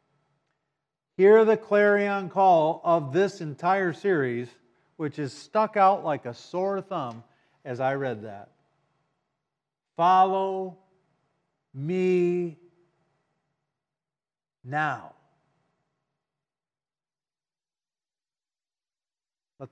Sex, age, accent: male, 50-69, American